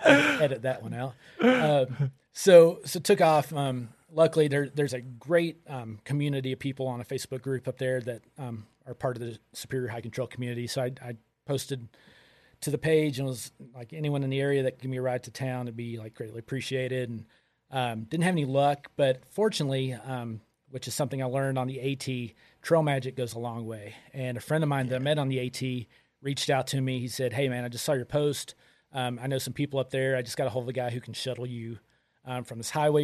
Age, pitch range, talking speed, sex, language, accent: 30-49, 125-140 Hz, 245 wpm, male, English, American